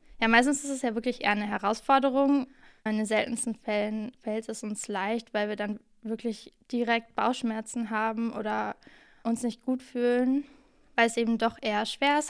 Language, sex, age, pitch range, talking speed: German, female, 10-29, 215-255 Hz, 170 wpm